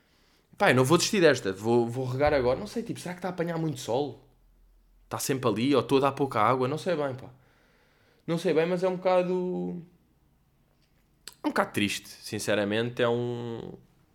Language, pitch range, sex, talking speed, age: Portuguese, 95-145 Hz, male, 195 wpm, 20-39